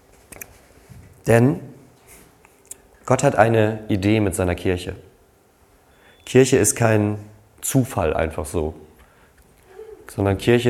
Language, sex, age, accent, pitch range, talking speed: German, male, 30-49, German, 105-130 Hz, 90 wpm